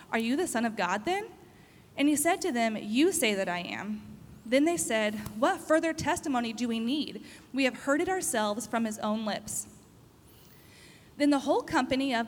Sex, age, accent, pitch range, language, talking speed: female, 20-39, American, 215-280 Hz, English, 195 wpm